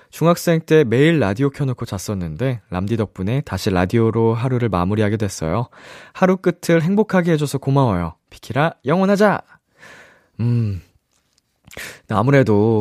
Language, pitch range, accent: Korean, 100-160 Hz, native